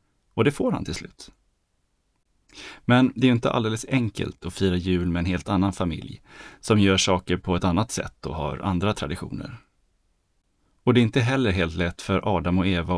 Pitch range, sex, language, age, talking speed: 90-115 Hz, male, Swedish, 30-49, 200 wpm